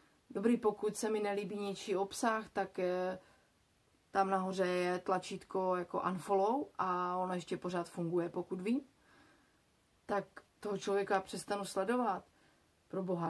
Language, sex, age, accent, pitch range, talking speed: Czech, female, 30-49, native, 180-195 Hz, 130 wpm